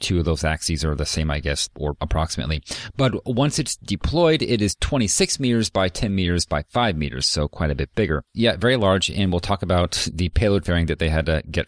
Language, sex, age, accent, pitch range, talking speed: English, male, 40-59, American, 85-105 Hz, 230 wpm